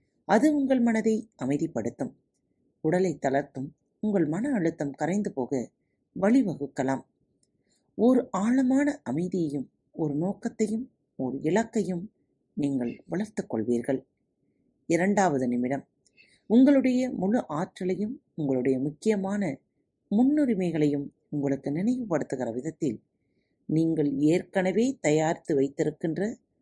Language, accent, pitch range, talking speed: Tamil, native, 140-210 Hz, 80 wpm